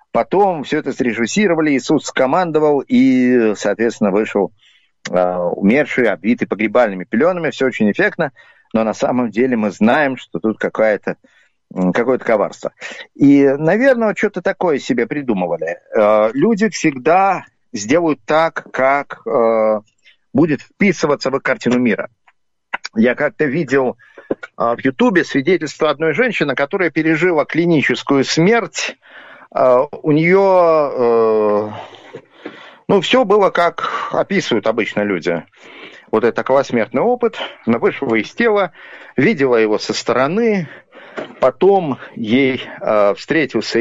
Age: 50-69